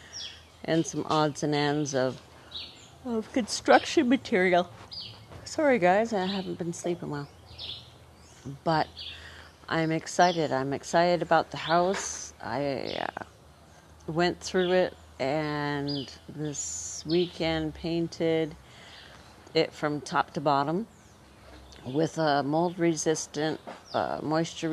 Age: 50-69